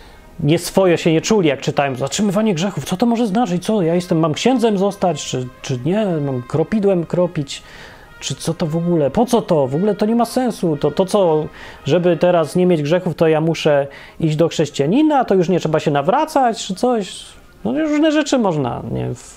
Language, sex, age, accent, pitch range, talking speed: Polish, male, 30-49, native, 145-205 Hz, 205 wpm